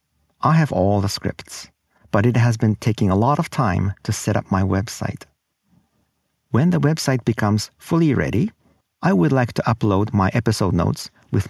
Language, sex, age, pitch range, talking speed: English, male, 50-69, 105-135 Hz, 175 wpm